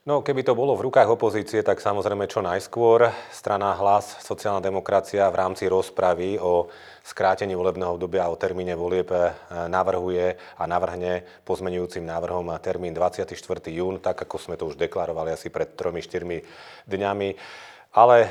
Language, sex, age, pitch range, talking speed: Slovak, male, 30-49, 90-100 Hz, 150 wpm